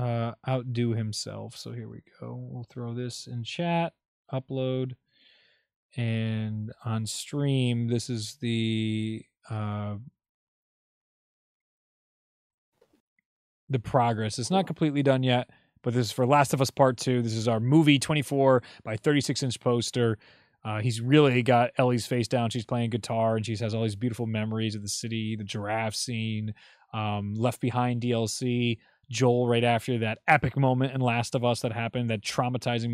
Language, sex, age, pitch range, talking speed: English, male, 20-39, 110-130 Hz, 155 wpm